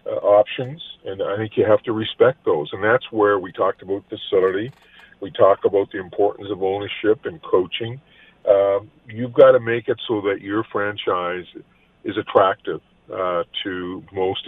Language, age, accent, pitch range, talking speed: English, 50-69, American, 95-120 Hz, 170 wpm